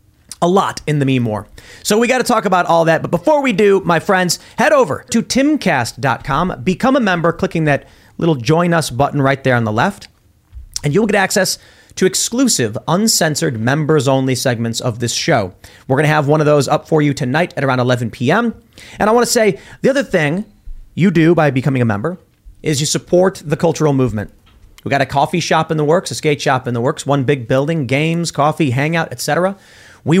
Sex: male